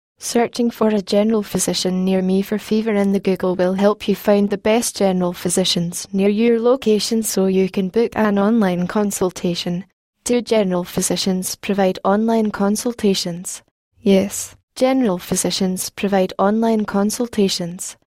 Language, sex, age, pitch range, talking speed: English, female, 10-29, 185-215 Hz, 140 wpm